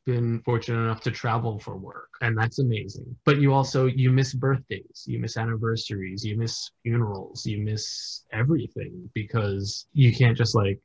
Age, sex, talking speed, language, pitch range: 20-39, male, 165 wpm, English, 105-130 Hz